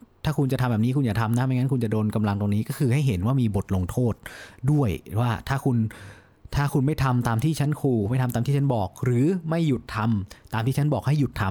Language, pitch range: Thai, 105-140 Hz